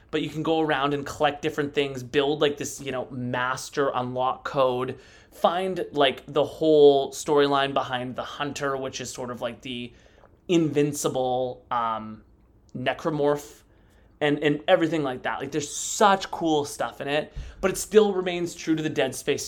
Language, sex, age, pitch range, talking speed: English, male, 20-39, 125-160 Hz, 170 wpm